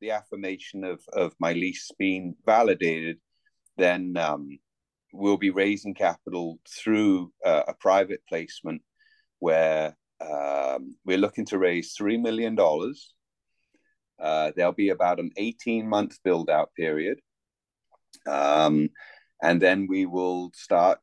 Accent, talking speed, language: British, 120 wpm, English